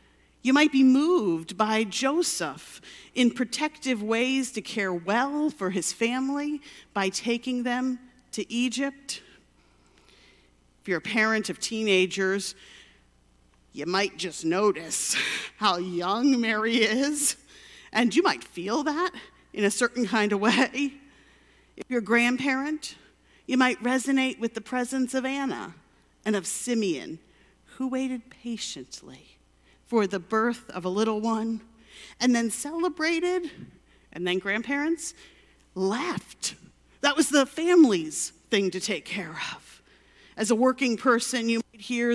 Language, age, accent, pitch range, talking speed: English, 50-69, American, 205-285 Hz, 130 wpm